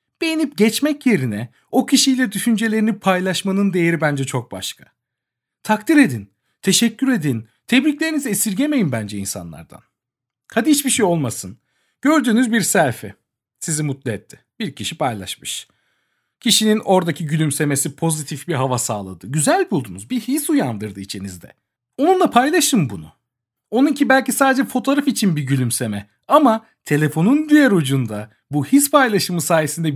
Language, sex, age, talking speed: Turkish, male, 40-59, 125 wpm